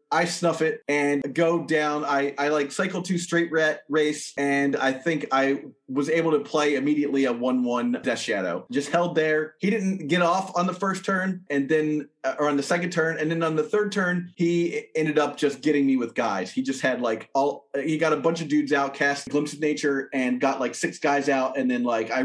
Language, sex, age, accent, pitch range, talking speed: English, male, 30-49, American, 140-175 Hz, 230 wpm